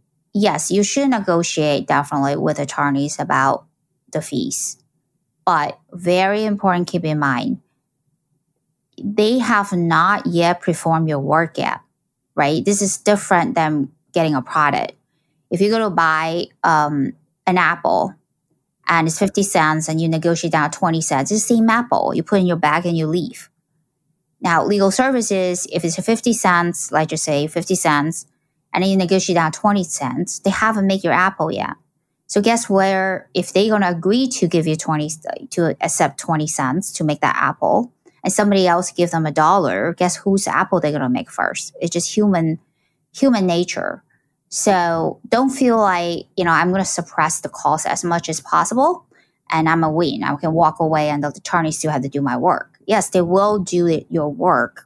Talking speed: 180 wpm